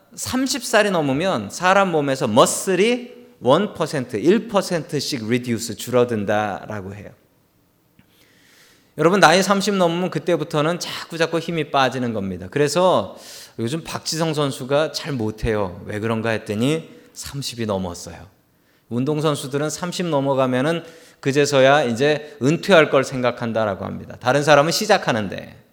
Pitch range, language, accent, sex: 120-190 Hz, Korean, native, male